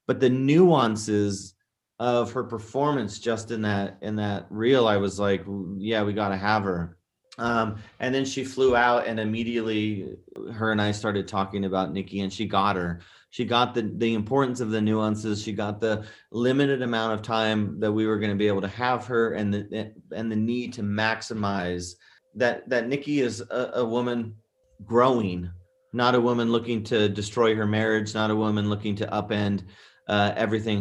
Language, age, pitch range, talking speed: English, 30-49, 100-120 Hz, 185 wpm